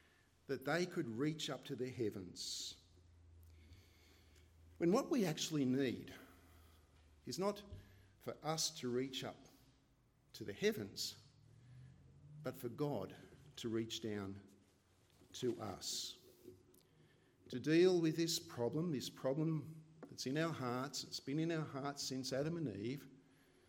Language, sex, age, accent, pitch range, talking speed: English, male, 50-69, Australian, 110-165 Hz, 130 wpm